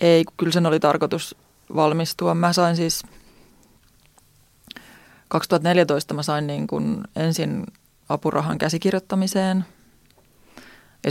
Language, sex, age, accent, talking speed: Finnish, female, 30-49, native, 90 wpm